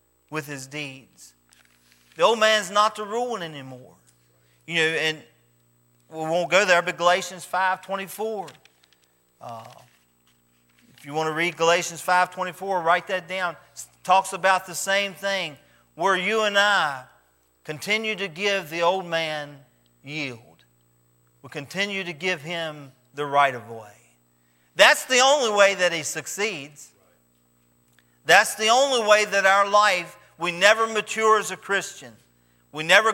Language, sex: English, male